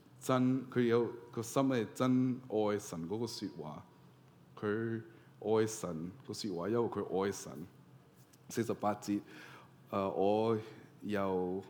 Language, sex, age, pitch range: Chinese, male, 20-39, 100-130 Hz